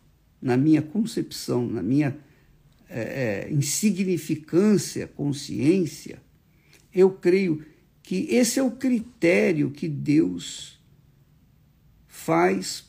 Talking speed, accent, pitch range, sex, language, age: 85 wpm, Brazilian, 150-230 Hz, male, Portuguese, 60-79